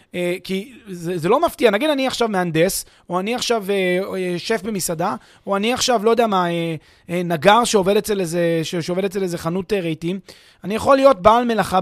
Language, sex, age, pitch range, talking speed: Hebrew, male, 30-49, 175-230 Hz, 210 wpm